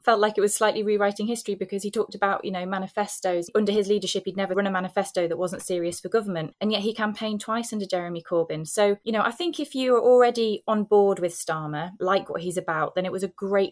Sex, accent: female, British